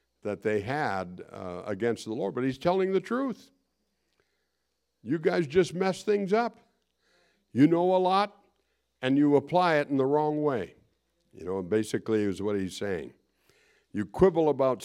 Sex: male